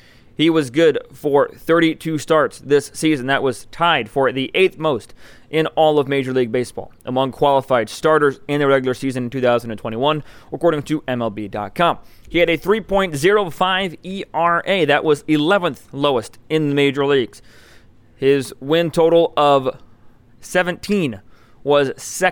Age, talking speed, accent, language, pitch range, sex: 20-39, 140 wpm, American, English, 120-155 Hz, male